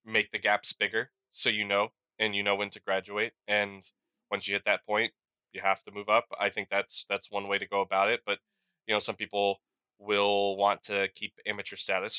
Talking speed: 220 wpm